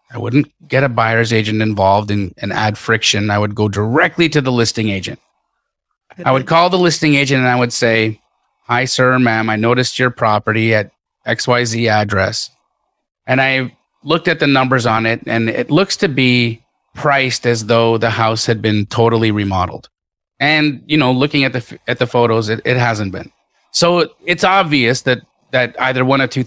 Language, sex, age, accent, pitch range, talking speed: English, male, 30-49, American, 115-145 Hz, 195 wpm